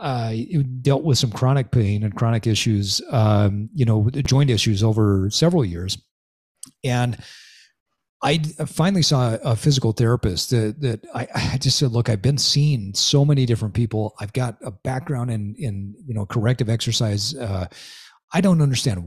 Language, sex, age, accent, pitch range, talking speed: English, male, 40-59, American, 115-155 Hz, 175 wpm